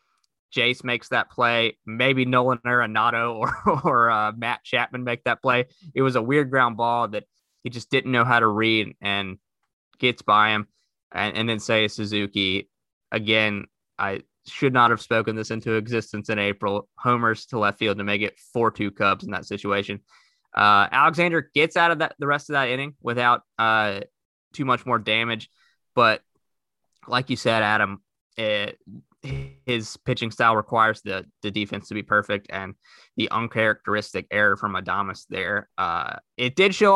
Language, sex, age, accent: English, male, 20-39, American